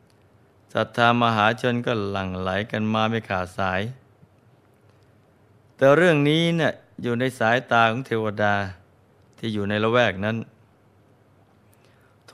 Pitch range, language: 105-120 Hz, Thai